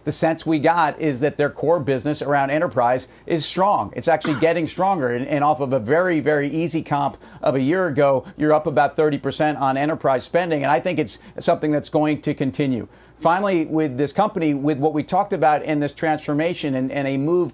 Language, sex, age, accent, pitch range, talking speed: English, male, 50-69, American, 140-160 Hz, 210 wpm